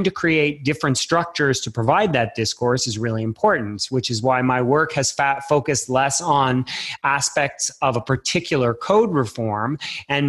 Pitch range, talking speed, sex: 125-155 Hz, 160 wpm, male